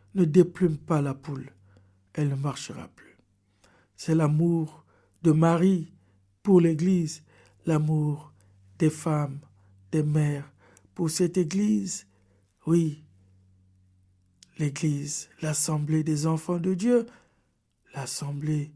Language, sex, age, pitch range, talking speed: French, male, 60-79, 155-205 Hz, 105 wpm